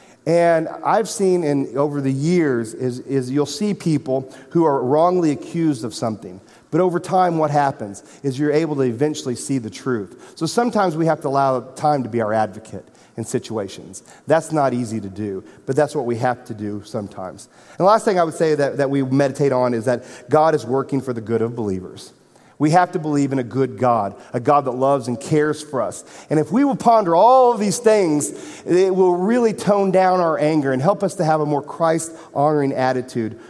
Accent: American